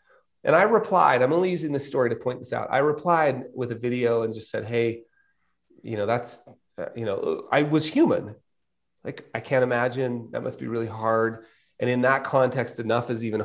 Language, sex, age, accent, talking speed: English, male, 30-49, American, 200 wpm